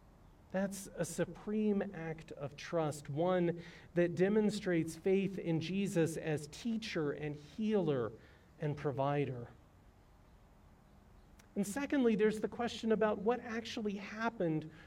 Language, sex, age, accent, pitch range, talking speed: English, male, 40-59, American, 150-210 Hz, 110 wpm